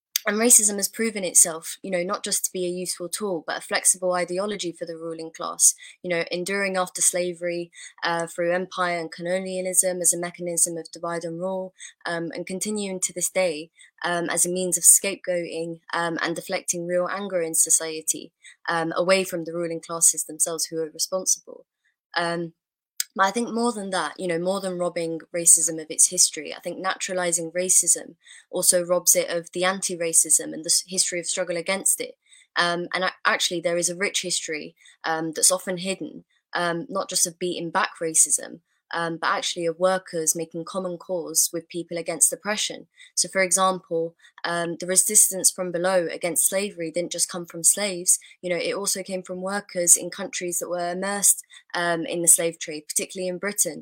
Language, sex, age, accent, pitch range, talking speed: English, female, 20-39, British, 170-185 Hz, 185 wpm